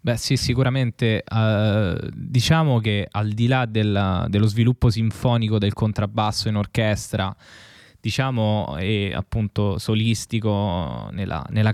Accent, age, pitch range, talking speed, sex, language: native, 20-39, 105-130 Hz, 120 wpm, male, Italian